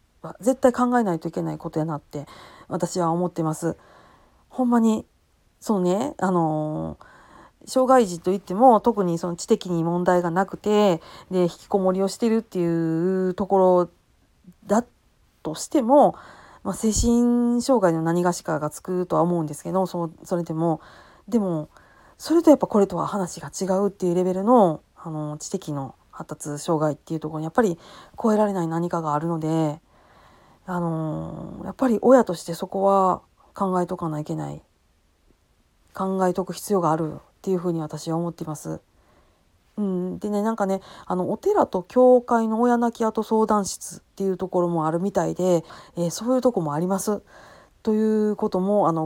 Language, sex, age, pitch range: Japanese, female, 40-59, 165-210 Hz